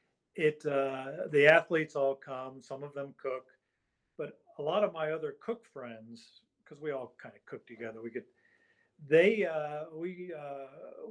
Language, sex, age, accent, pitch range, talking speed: English, male, 50-69, American, 125-150 Hz, 165 wpm